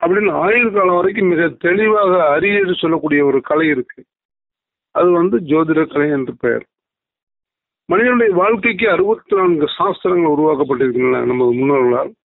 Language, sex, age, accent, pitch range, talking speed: Tamil, male, 50-69, native, 160-215 Hz, 120 wpm